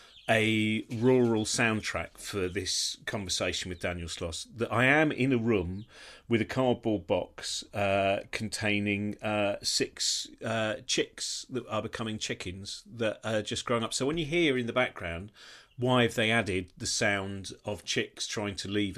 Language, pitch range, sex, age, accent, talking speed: English, 95-120 Hz, male, 40-59, British, 165 wpm